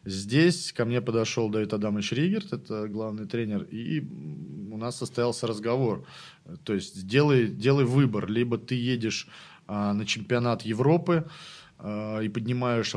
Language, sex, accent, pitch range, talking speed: Russian, male, native, 105-135 Hz, 140 wpm